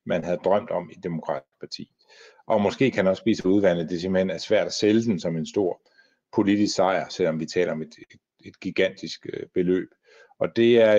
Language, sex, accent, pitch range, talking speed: Danish, male, native, 90-120 Hz, 200 wpm